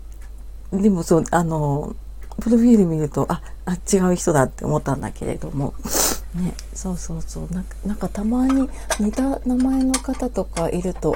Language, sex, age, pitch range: Japanese, female, 40-59, 155-200 Hz